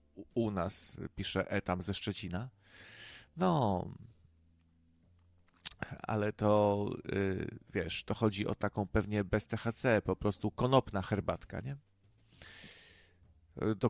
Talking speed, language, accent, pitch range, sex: 105 wpm, Polish, native, 95-120 Hz, male